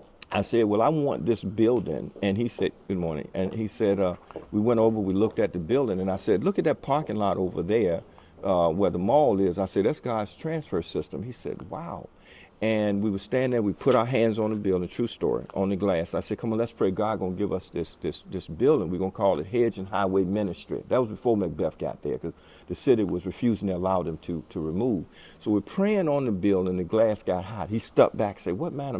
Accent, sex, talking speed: American, male, 255 wpm